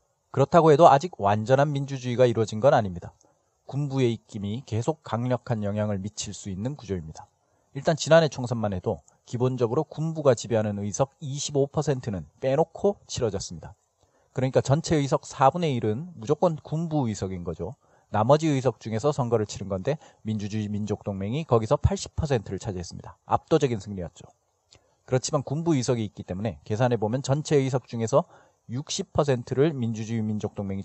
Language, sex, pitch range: Korean, male, 105-145 Hz